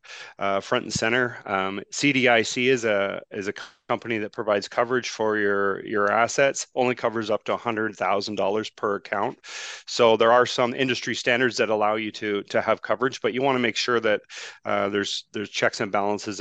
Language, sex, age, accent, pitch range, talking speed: English, male, 30-49, American, 100-120 Hz, 200 wpm